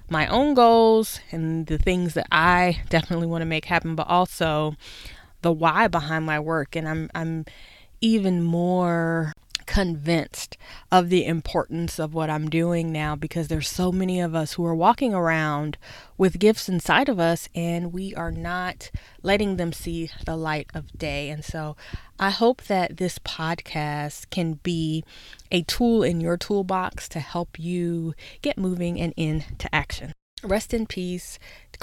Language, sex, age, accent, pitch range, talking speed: English, female, 20-39, American, 155-185 Hz, 160 wpm